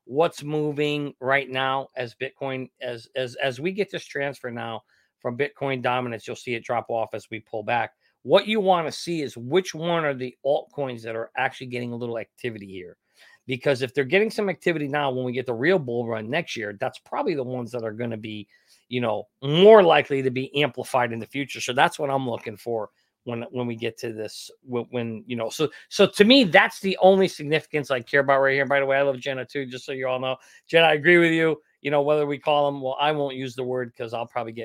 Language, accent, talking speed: English, American, 245 wpm